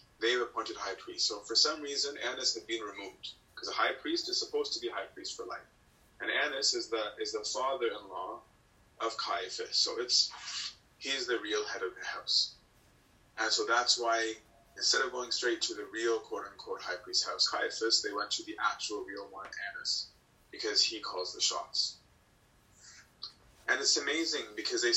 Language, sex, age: English, male, 30-49